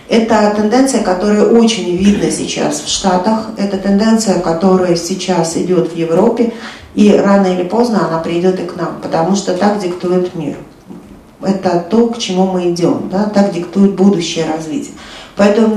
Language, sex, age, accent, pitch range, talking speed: Russian, female, 40-59, native, 175-225 Hz, 155 wpm